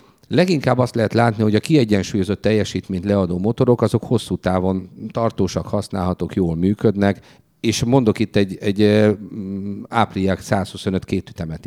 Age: 50-69